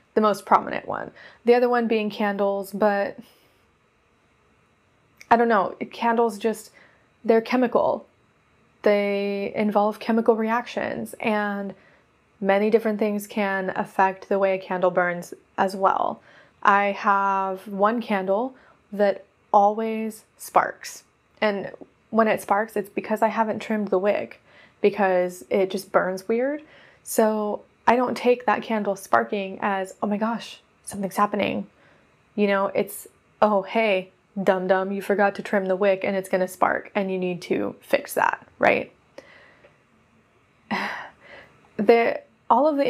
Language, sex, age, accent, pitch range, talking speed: English, female, 20-39, American, 195-220 Hz, 135 wpm